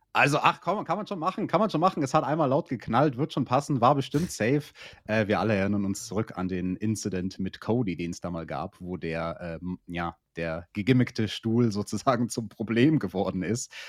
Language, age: German, 30-49